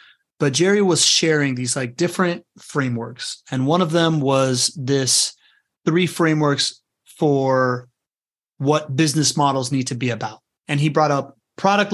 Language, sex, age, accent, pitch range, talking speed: English, male, 30-49, American, 135-170 Hz, 145 wpm